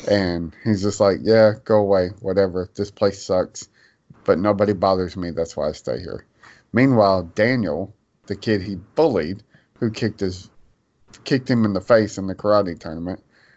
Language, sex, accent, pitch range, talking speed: English, male, American, 95-110 Hz, 170 wpm